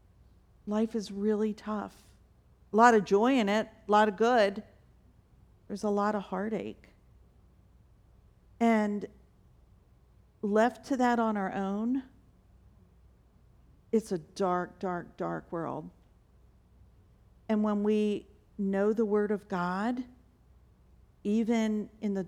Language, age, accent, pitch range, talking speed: English, 50-69, American, 195-220 Hz, 115 wpm